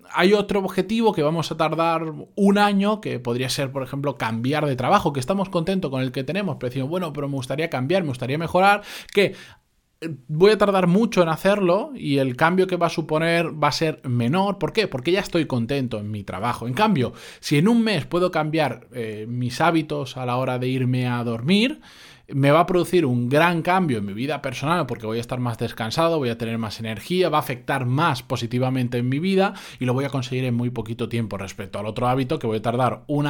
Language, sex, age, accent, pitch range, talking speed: Spanish, male, 20-39, Spanish, 120-165 Hz, 230 wpm